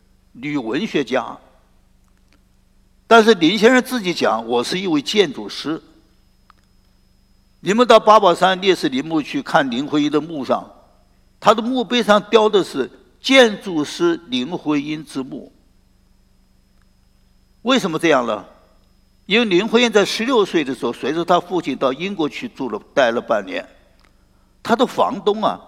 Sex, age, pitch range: male, 60-79, 145-230 Hz